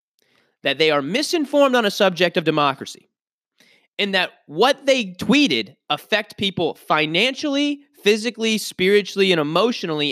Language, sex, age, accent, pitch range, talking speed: English, male, 20-39, American, 175-215 Hz, 125 wpm